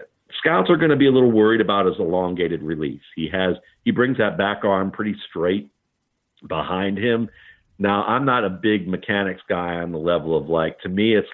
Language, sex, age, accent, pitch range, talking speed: English, male, 50-69, American, 80-105 Hz, 200 wpm